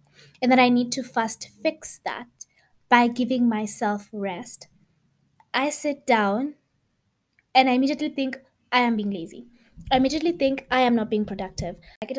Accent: South African